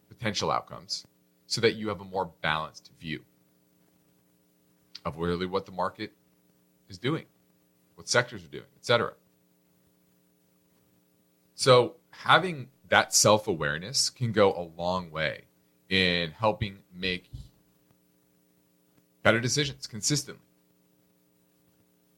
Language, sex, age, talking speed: English, male, 30-49, 105 wpm